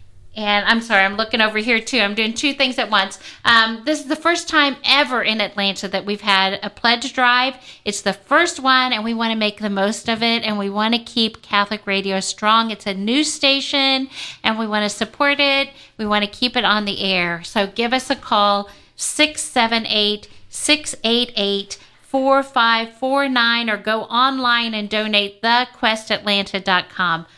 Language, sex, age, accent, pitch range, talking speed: English, female, 50-69, American, 205-255 Hz, 175 wpm